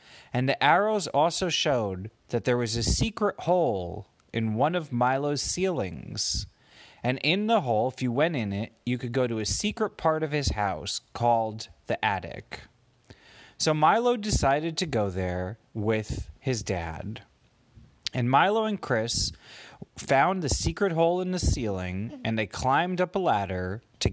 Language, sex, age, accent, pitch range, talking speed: English, male, 30-49, American, 105-160 Hz, 160 wpm